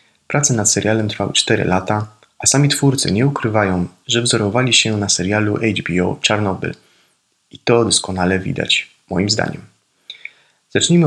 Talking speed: 135 wpm